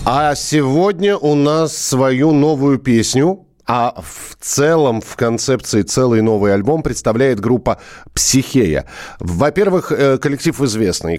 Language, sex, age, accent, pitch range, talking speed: Russian, male, 40-59, native, 115-155 Hz, 115 wpm